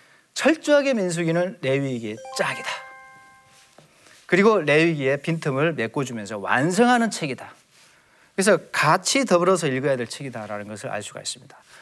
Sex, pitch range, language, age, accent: male, 140-235 Hz, Korean, 40-59, native